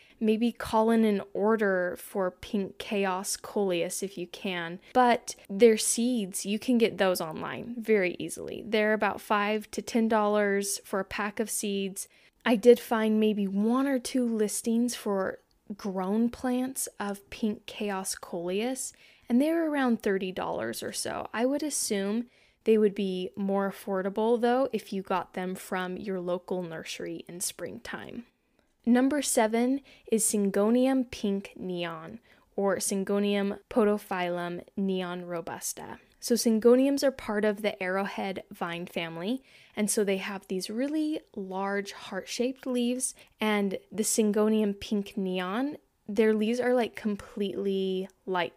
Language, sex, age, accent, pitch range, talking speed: English, female, 10-29, American, 190-235 Hz, 140 wpm